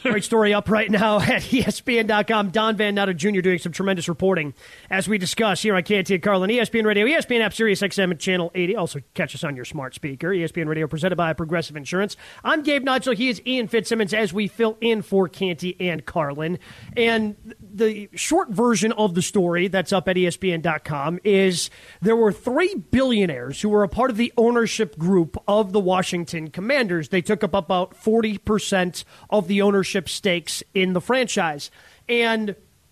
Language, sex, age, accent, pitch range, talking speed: English, male, 30-49, American, 185-230 Hz, 180 wpm